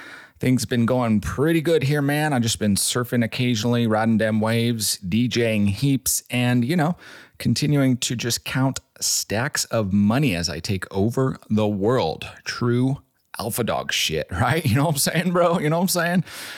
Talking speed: 175 wpm